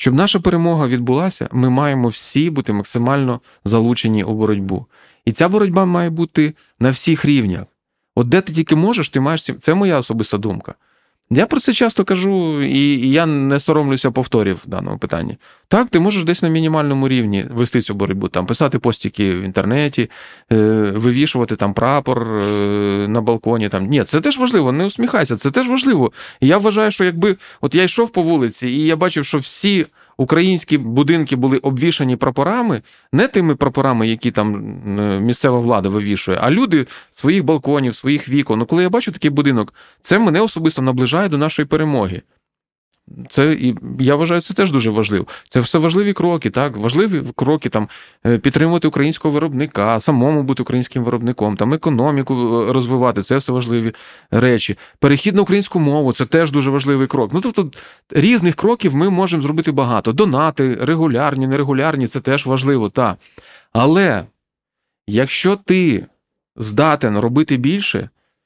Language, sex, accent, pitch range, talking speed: Ukrainian, male, native, 120-165 Hz, 160 wpm